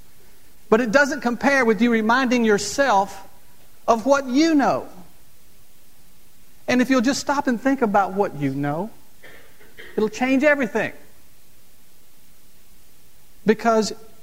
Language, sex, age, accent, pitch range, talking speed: English, male, 50-69, American, 160-230 Hz, 115 wpm